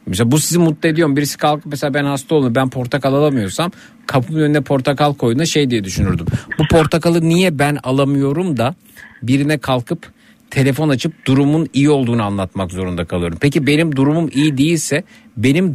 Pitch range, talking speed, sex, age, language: 130-170 Hz, 170 wpm, male, 50-69, Turkish